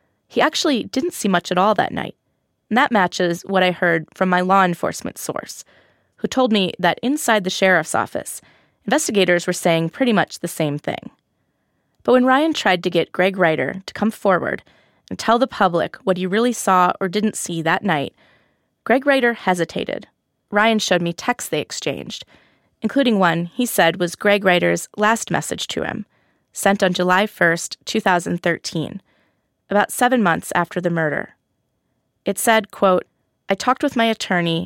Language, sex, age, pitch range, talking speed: English, female, 20-39, 170-215 Hz, 170 wpm